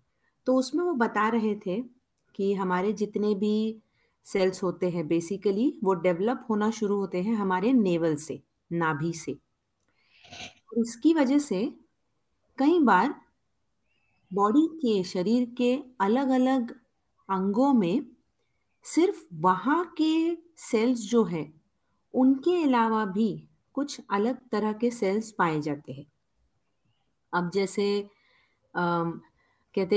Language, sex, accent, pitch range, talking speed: Hindi, female, native, 180-240 Hz, 120 wpm